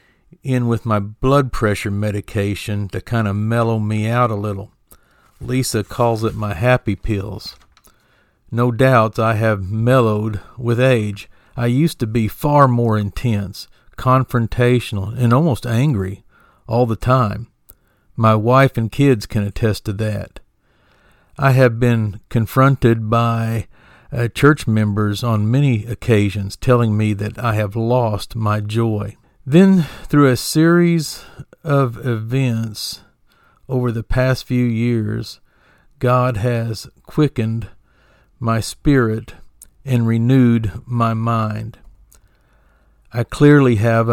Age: 50-69